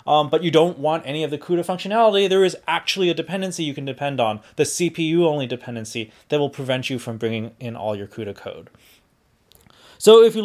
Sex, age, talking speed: male, 20-39, 210 wpm